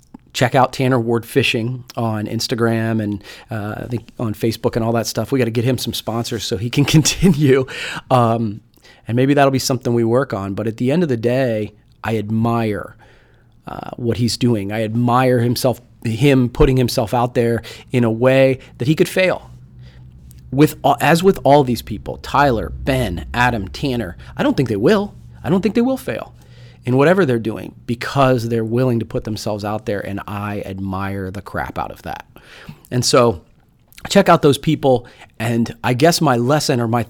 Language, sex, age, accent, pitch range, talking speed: English, male, 30-49, American, 115-135 Hz, 195 wpm